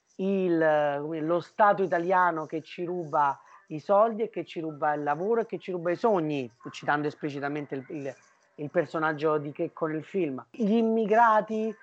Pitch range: 155-210 Hz